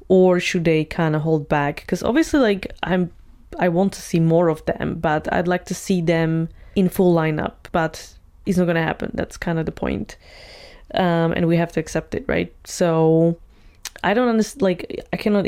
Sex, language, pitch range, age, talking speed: female, English, 160-185 Hz, 20-39, 205 wpm